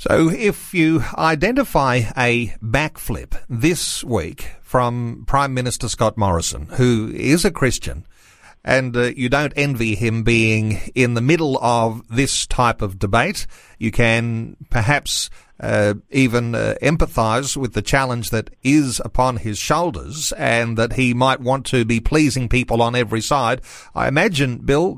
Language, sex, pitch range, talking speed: English, male, 115-145 Hz, 150 wpm